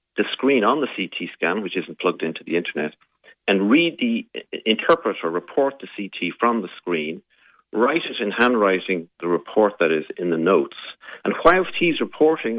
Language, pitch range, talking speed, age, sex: English, 90-115 Hz, 175 wpm, 50-69, male